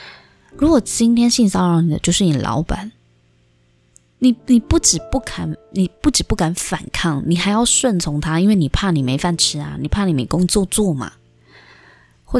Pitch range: 155-210 Hz